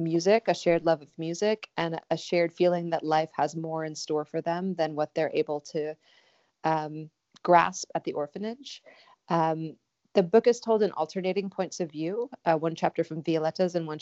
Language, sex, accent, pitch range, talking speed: English, female, American, 150-175 Hz, 195 wpm